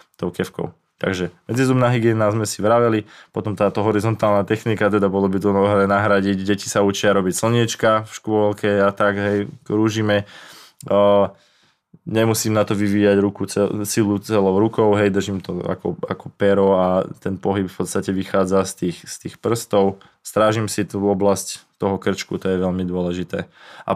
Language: Slovak